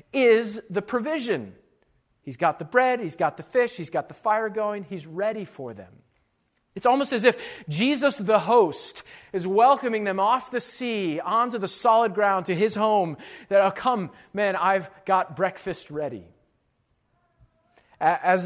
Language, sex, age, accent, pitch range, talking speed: English, male, 40-59, American, 180-245 Hz, 160 wpm